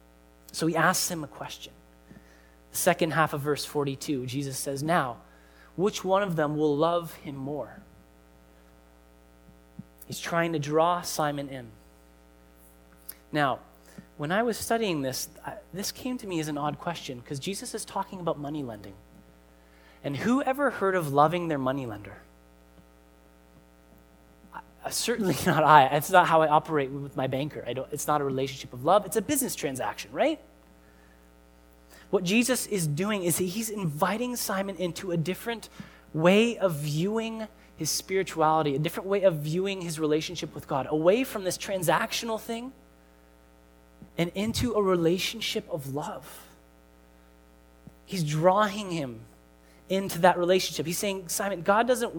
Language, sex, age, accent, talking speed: English, male, 20-39, American, 145 wpm